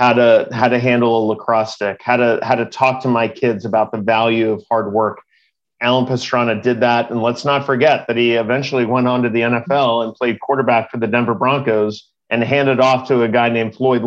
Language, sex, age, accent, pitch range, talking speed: English, male, 40-59, American, 115-135 Hz, 220 wpm